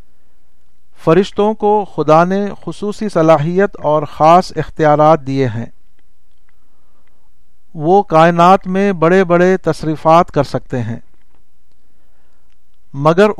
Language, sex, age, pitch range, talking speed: Urdu, male, 60-79, 125-175 Hz, 95 wpm